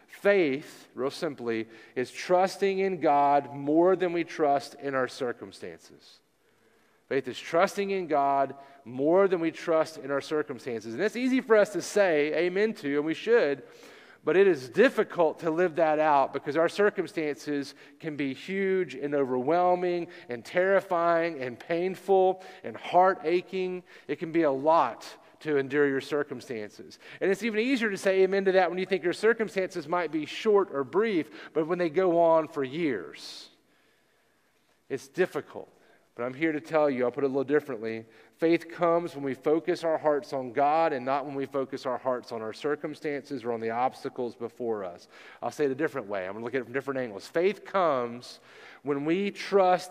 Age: 40-59